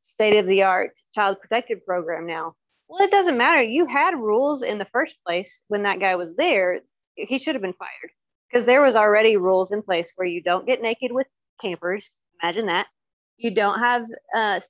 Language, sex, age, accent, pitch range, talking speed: English, female, 30-49, American, 185-235 Hz, 190 wpm